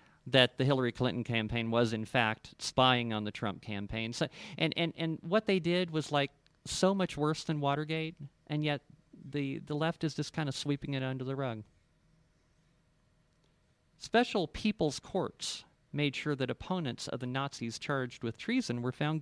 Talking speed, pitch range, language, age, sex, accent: 170 wpm, 120-155 Hz, English, 40-59, male, American